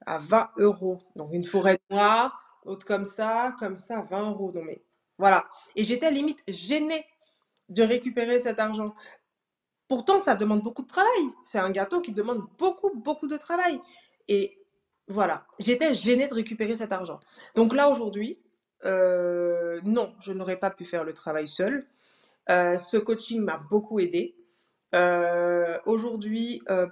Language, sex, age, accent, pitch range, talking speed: French, female, 20-39, French, 195-250 Hz, 160 wpm